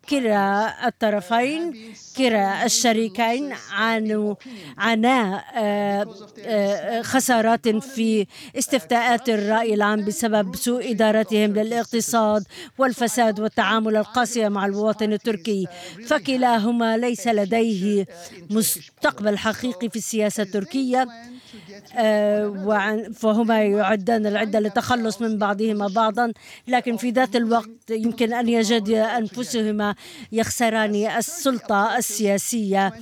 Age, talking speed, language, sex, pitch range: 50-69, 85 wpm, Arabic, female, 210-235 Hz